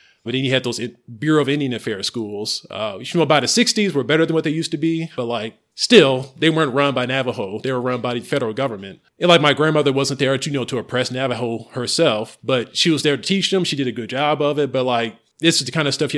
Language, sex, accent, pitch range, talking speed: English, male, American, 120-145 Hz, 280 wpm